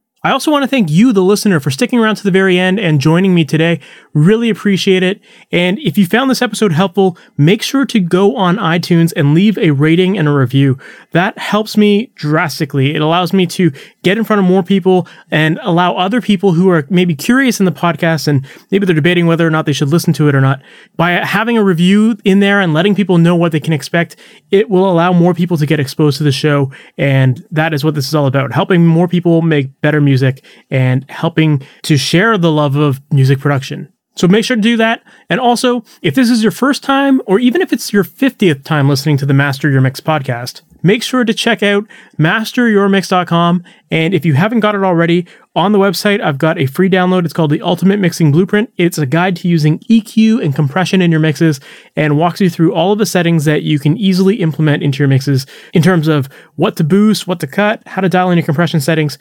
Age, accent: 30-49, American